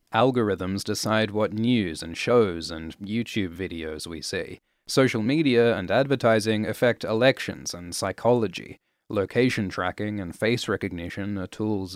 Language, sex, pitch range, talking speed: English, male, 95-120 Hz, 130 wpm